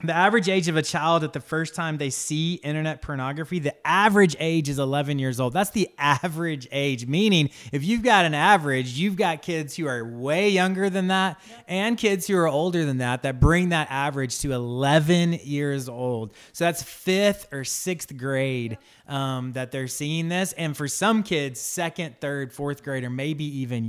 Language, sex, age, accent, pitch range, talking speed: English, male, 20-39, American, 130-170 Hz, 195 wpm